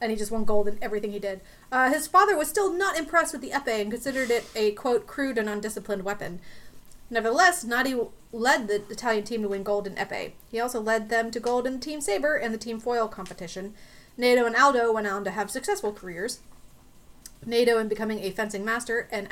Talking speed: 215 wpm